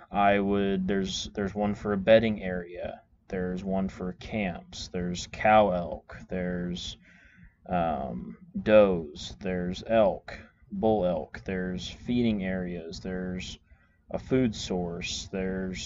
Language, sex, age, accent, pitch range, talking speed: English, male, 20-39, American, 90-105 Hz, 115 wpm